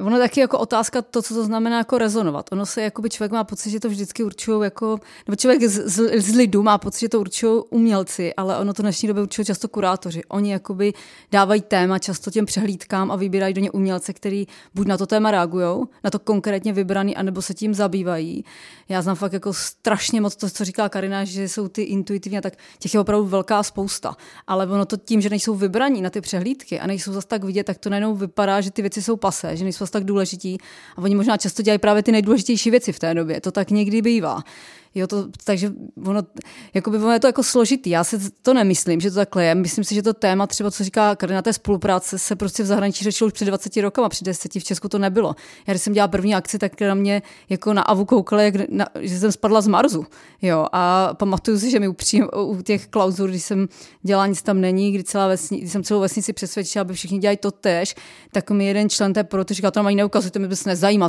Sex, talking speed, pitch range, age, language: female, 230 wpm, 195-215 Hz, 20-39, Czech